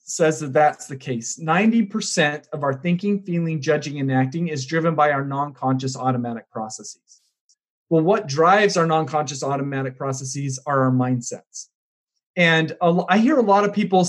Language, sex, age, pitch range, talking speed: English, male, 40-59, 135-175 Hz, 160 wpm